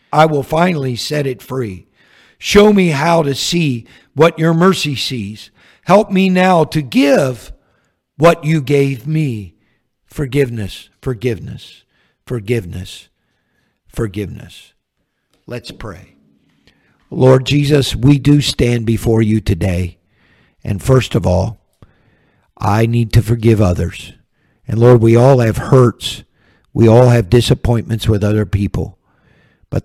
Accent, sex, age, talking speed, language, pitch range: American, male, 50-69, 125 wpm, English, 100-125 Hz